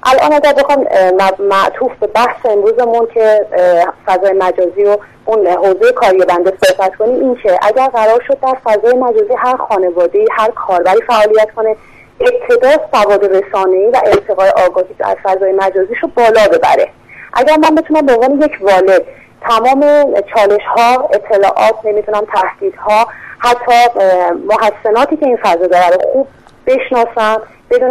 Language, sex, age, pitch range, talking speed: Persian, female, 40-59, 200-255 Hz, 140 wpm